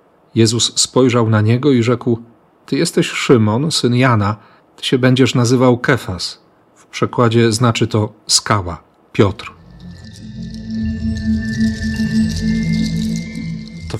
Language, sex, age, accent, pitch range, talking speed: Polish, male, 40-59, native, 110-145 Hz, 100 wpm